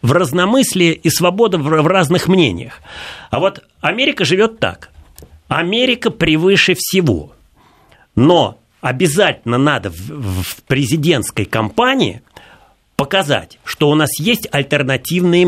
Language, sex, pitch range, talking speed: Russian, male, 115-180 Hz, 105 wpm